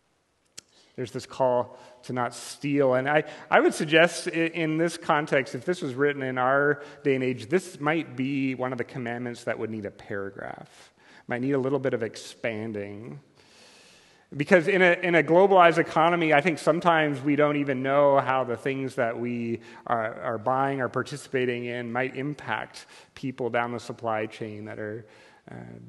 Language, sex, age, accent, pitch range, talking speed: English, male, 30-49, American, 115-145 Hz, 180 wpm